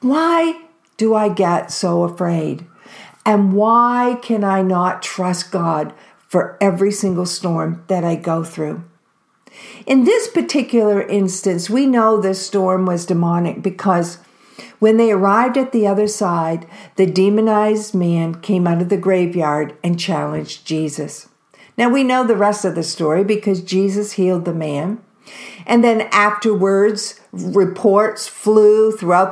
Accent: American